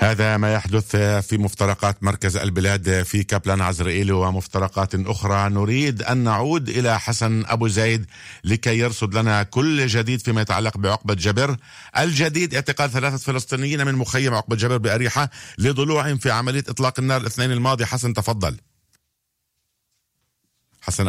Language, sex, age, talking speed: Hebrew, male, 50-69, 135 wpm